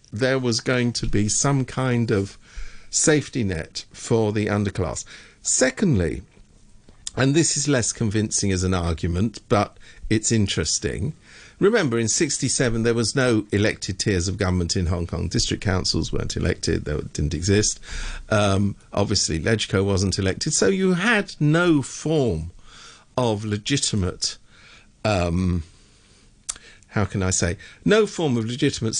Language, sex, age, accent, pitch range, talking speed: English, male, 50-69, British, 95-120 Hz, 135 wpm